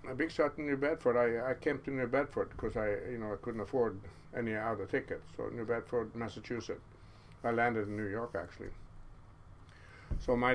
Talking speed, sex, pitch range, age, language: 195 wpm, male, 105-120 Hz, 60-79, English